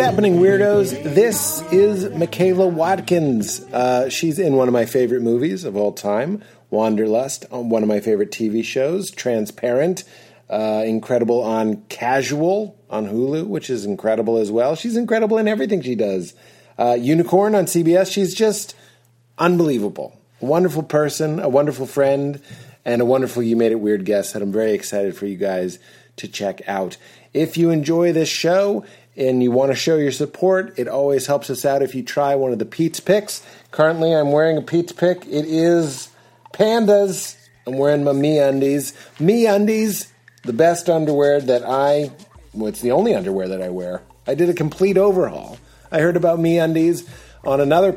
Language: English